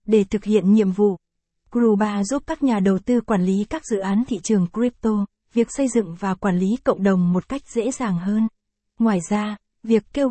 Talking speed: 210 wpm